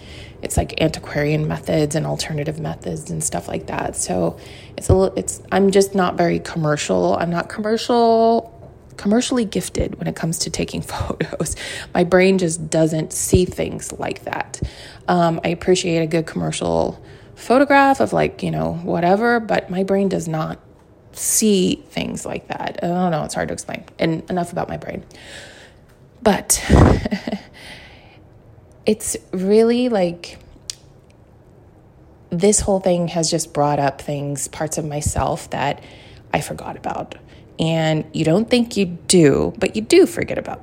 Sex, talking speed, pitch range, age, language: female, 155 wpm, 155-200 Hz, 20-39, English